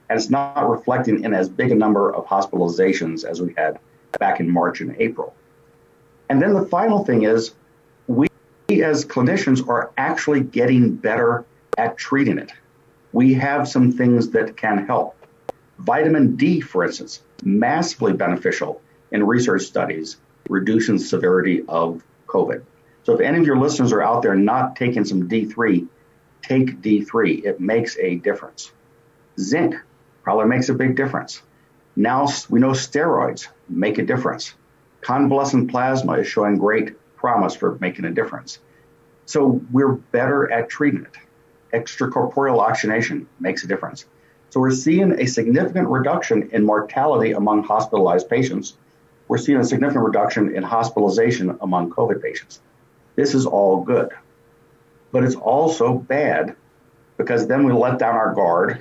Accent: American